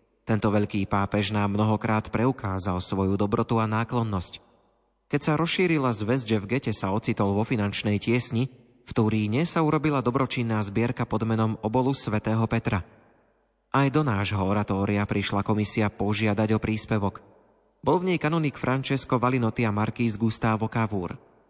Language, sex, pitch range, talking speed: Slovak, male, 105-125 Hz, 145 wpm